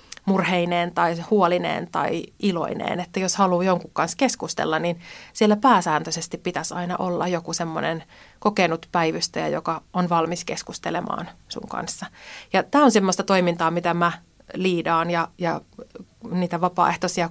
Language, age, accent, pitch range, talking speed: Finnish, 30-49, native, 170-190 Hz, 135 wpm